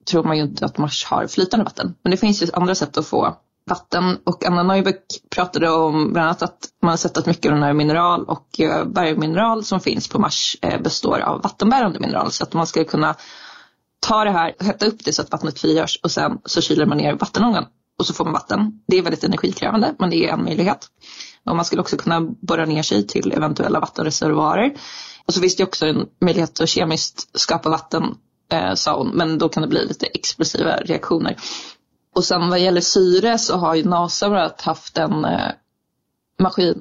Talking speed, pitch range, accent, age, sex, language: 205 wpm, 160-190 Hz, native, 20-39, female, Swedish